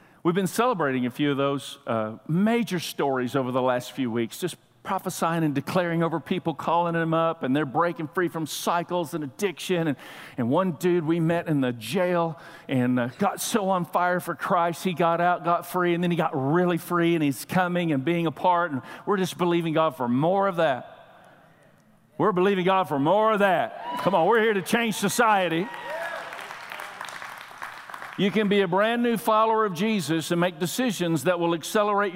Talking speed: 195 wpm